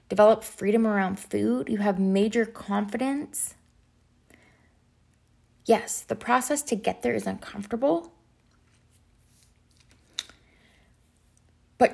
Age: 20-39